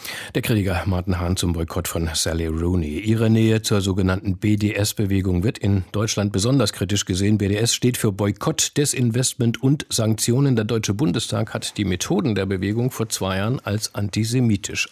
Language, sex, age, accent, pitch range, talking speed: German, male, 50-69, German, 100-120 Hz, 160 wpm